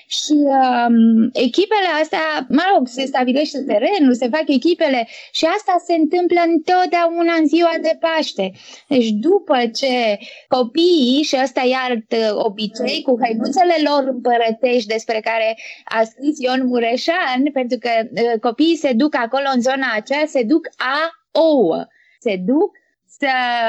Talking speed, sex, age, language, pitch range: 140 wpm, female, 20-39, Romanian, 245-310 Hz